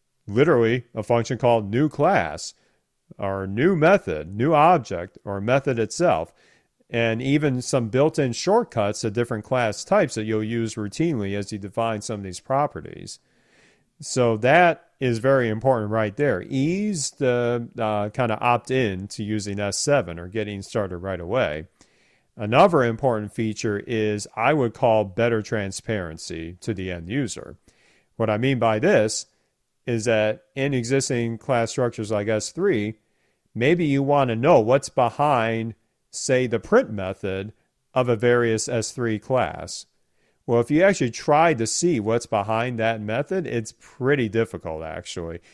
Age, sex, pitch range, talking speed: 40-59, male, 105-130 Hz, 150 wpm